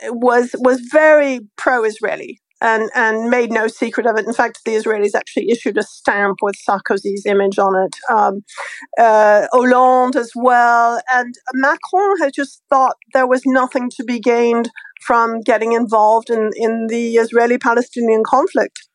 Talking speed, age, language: 150 wpm, 50-69, English